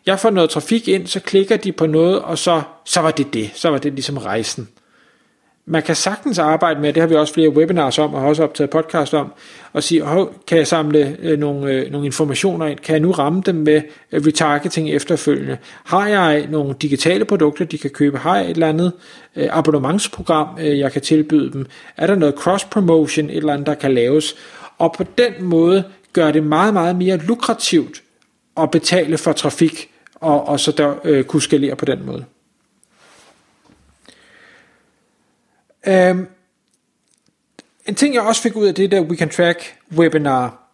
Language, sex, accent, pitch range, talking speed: Danish, male, native, 150-180 Hz, 175 wpm